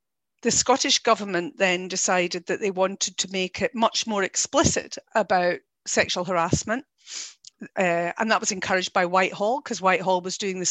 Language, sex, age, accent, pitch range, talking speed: English, female, 50-69, British, 185-225 Hz, 160 wpm